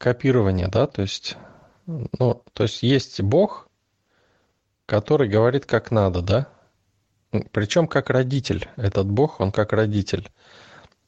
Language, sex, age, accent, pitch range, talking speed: Russian, male, 20-39, native, 100-120 Hz, 120 wpm